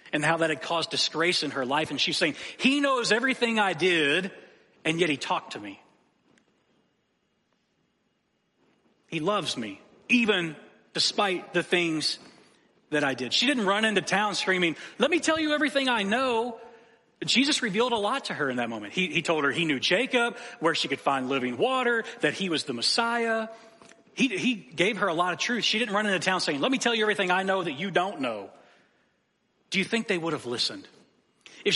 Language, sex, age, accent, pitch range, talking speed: English, male, 40-59, American, 155-225 Hz, 200 wpm